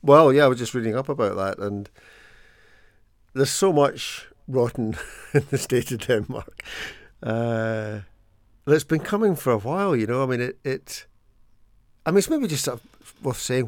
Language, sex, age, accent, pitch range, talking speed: English, male, 60-79, British, 105-130 Hz, 185 wpm